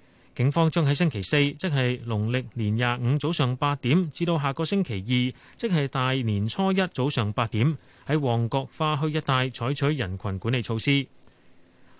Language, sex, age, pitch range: Chinese, male, 30-49, 120-160 Hz